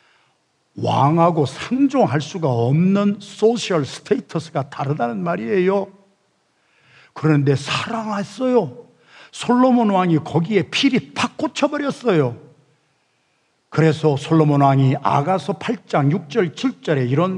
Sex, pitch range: male, 135-205 Hz